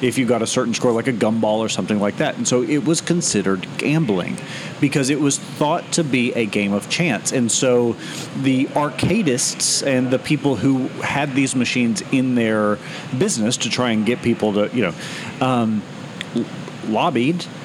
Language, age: English, 40-59